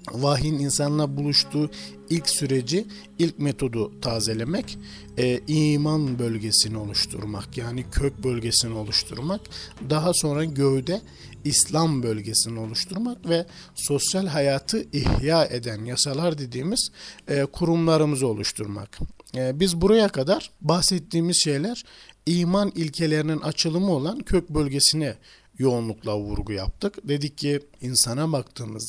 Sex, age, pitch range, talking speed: male, 50-69, 115-170 Hz, 105 wpm